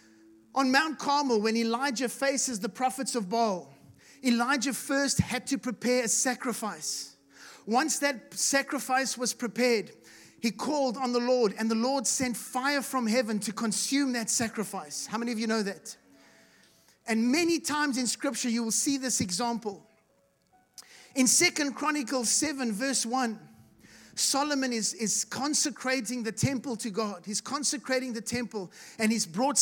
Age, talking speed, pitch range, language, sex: 30-49, 150 wpm, 225-270 Hz, English, male